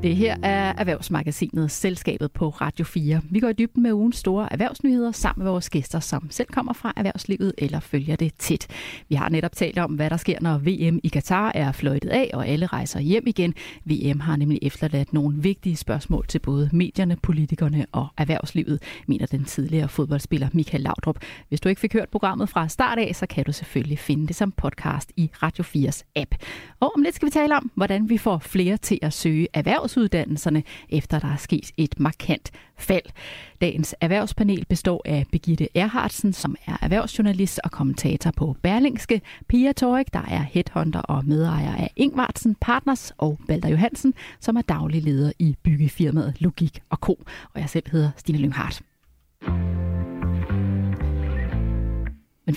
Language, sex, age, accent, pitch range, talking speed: Danish, female, 30-49, native, 150-210 Hz, 175 wpm